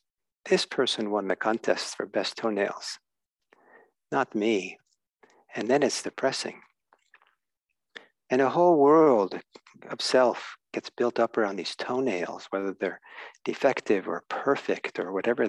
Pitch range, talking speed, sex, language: 110-165 Hz, 130 wpm, male, English